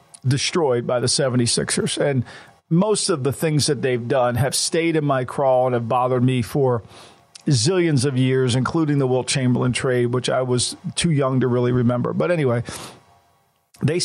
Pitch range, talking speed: 130-185 Hz, 175 wpm